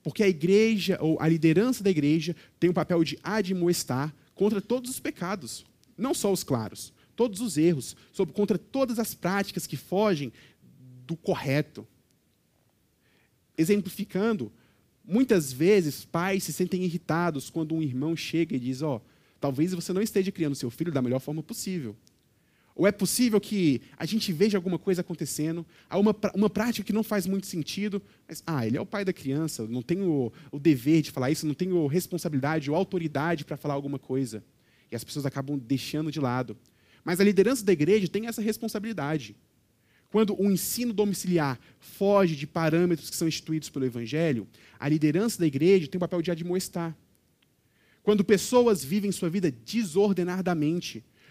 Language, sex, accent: Portuguese, male, Brazilian